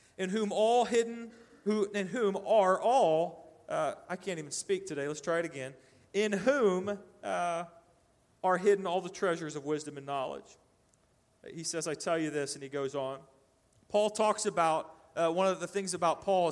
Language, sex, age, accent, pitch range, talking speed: English, male, 40-59, American, 175-210 Hz, 185 wpm